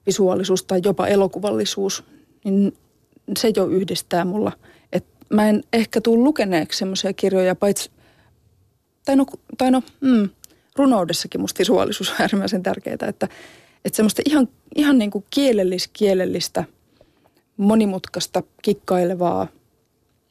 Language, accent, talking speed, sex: Finnish, native, 100 wpm, female